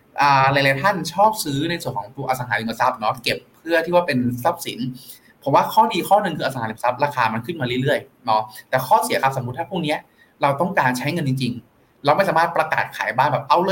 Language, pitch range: Thai, 125-170 Hz